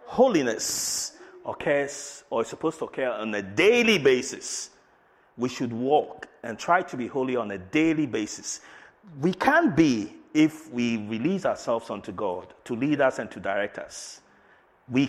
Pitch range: 130-210 Hz